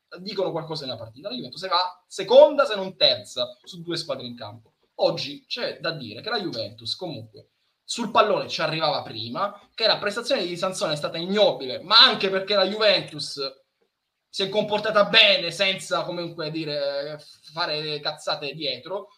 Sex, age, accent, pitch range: male, 20-39, native, 150-195 Hz